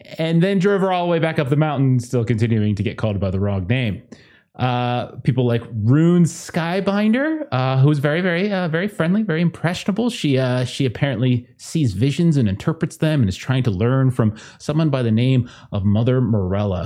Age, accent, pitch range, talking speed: 30-49, American, 110-170 Hz, 205 wpm